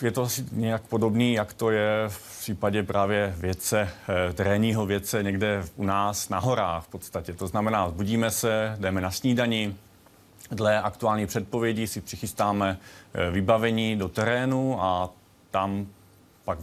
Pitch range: 95-110 Hz